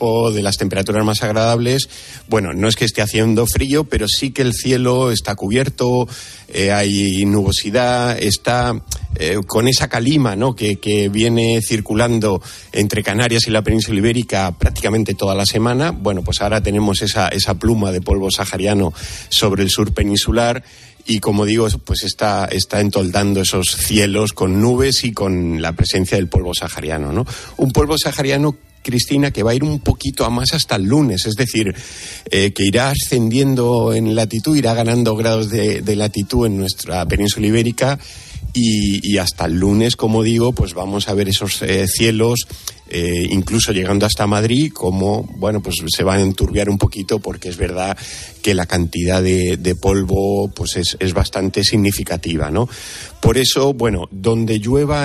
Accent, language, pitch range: Spanish, Spanish, 95-120 Hz